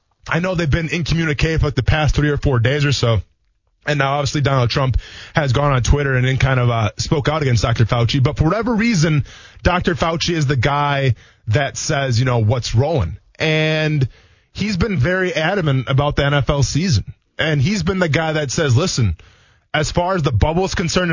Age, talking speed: 20-39, 205 wpm